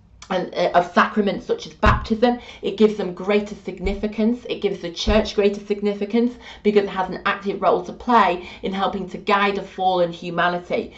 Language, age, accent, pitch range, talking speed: English, 30-49, British, 185-215 Hz, 170 wpm